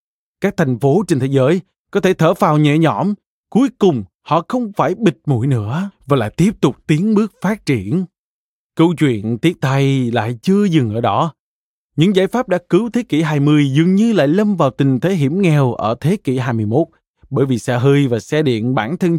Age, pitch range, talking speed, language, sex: 20-39, 130-180 Hz, 210 wpm, Vietnamese, male